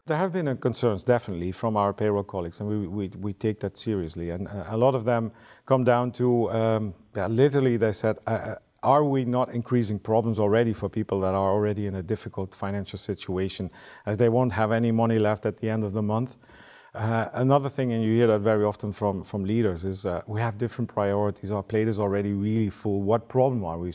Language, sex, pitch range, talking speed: English, male, 100-120 Hz, 220 wpm